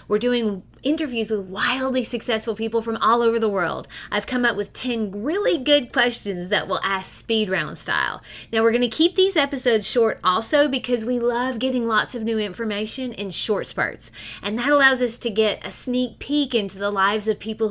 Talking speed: 205 wpm